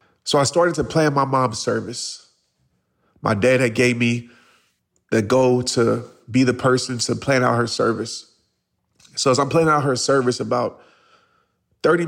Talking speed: 165 wpm